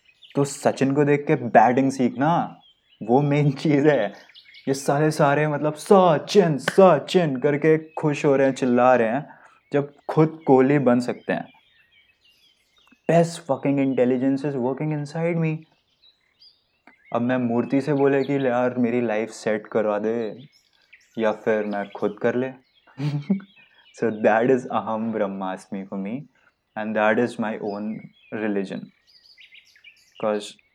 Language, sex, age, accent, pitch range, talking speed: Hindi, male, 20-39, native, 110-145 Hz, 140 wpm